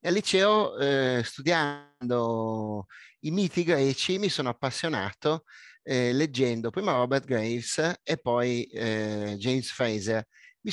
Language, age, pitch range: Italian, 30-49, 115-140 Hz